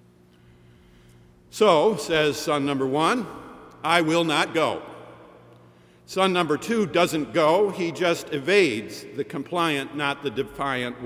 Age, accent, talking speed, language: 50-69, American, 120 wpm, English